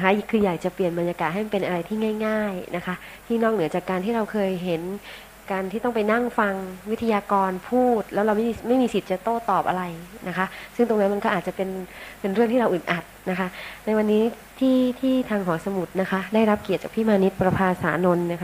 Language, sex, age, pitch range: Thai, female, 20-39, 175-210 Hz